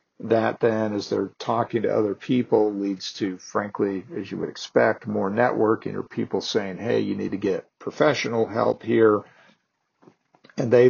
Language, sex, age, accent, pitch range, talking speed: English, male, 50-69, American, 100-110 Hz, 165 wpm